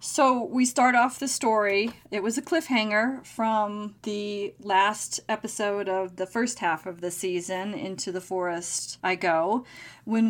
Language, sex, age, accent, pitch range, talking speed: English, female, 30-49, American, 185-220 Hz, 155 wpm